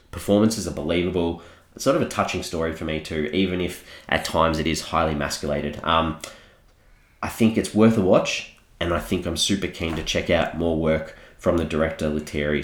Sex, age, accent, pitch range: male, 30-49, Australian, 80-100 Hz